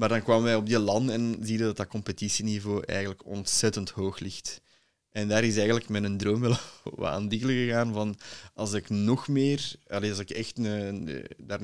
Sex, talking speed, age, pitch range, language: male, 195 wpm, 20-39, 100-115 Hz, Dutch